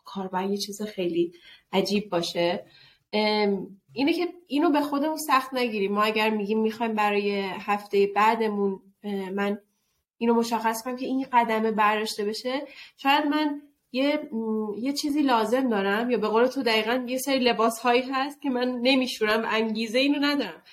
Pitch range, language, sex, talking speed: 205-260 Hz, Persian, female, 145 wpm